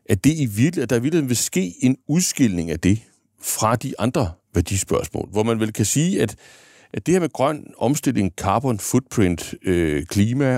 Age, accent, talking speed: 60-79, native, 180 wpm